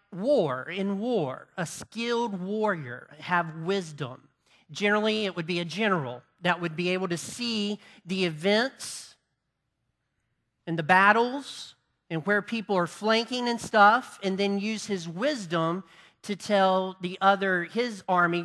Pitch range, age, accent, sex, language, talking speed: 165-215 Hz, 40-59, American, male, English, 140 wpm